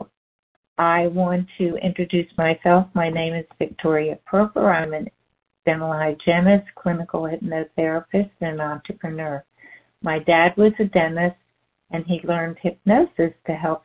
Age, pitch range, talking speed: 60-79, 160-190 Hz, 125 wpm